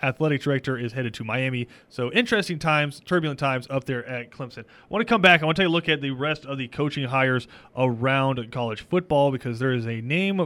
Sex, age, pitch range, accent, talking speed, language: male, 30-49, 130-165 Hz, American, 235 wpm, English